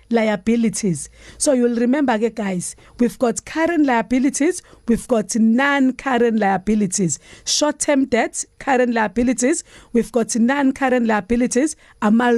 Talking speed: 120 wpm